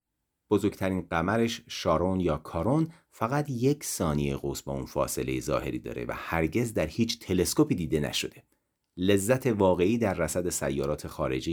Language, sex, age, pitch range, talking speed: Persian, male, 40-59, 75-115 Hz, 140 wpm